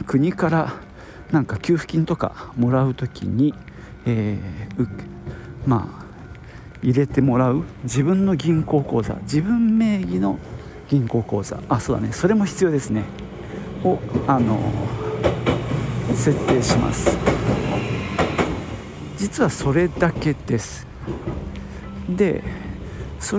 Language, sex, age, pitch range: Japanese, male, 50-69, 110-170 Hz